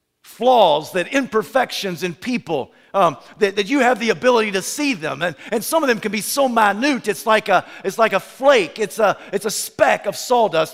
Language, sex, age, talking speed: English, male, 50-69, 210 wpm